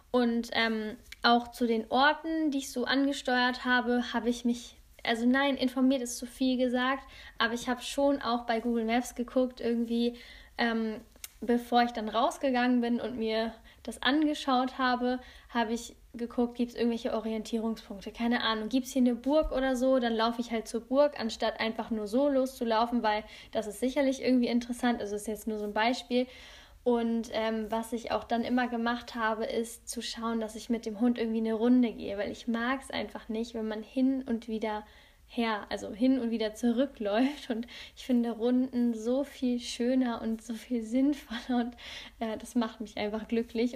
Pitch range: 225-250 Hz